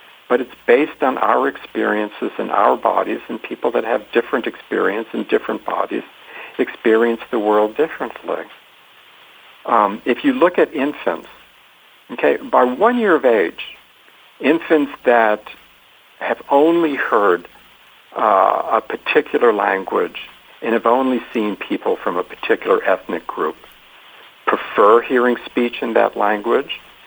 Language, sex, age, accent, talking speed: English, male, 60-79, American, 130 wpm